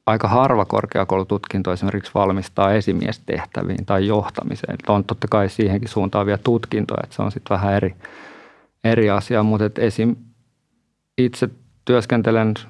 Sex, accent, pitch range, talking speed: male, native, 100-110 Hz, 130 wpm